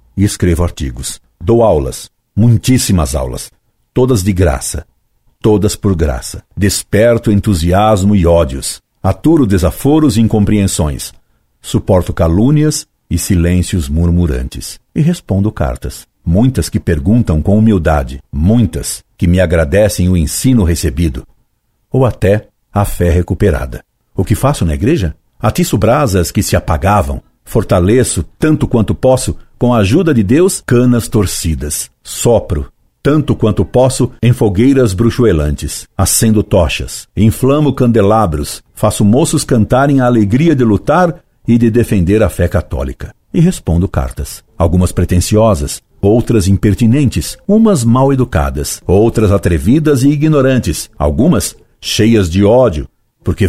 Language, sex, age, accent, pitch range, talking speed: Portuguese, male, 60-79, Brazilian, 85-115 Hz, 125 wpm